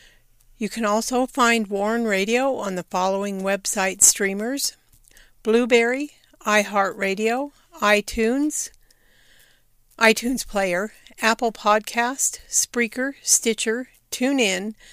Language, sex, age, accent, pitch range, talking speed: English, female, 50-69, American, 200-245 Hz, 85 wpm